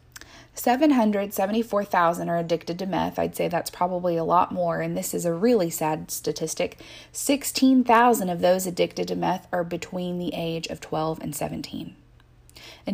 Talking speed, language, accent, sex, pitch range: 160 wpm, English, American, female, 170-210 Hz